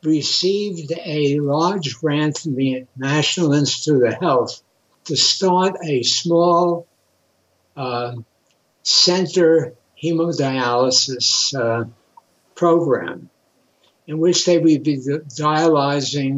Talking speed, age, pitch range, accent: 90 wpm, 60-79, 130-165 Hz, American